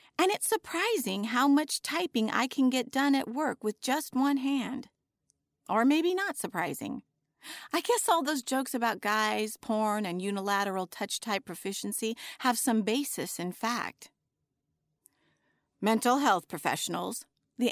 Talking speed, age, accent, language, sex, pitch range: 140 wpm, 40-59, American, English, female, 190-260 Hz